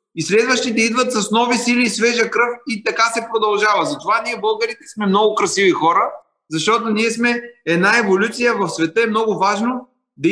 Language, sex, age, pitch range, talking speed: Bulgarian, male, 30-49, 195-235 Hz, 180 wpm